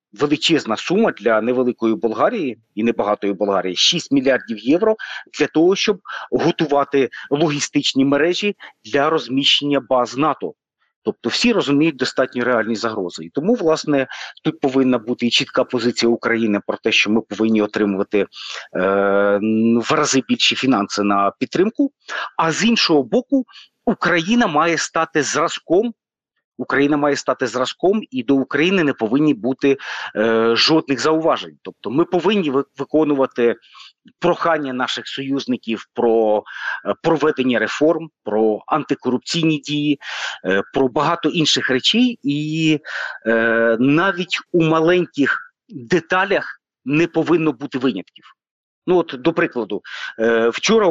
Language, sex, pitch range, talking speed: Ukrainian, male, 120-165 Hz, 125 wpm